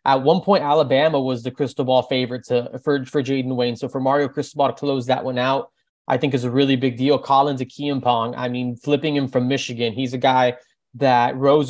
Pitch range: 125-140 Hz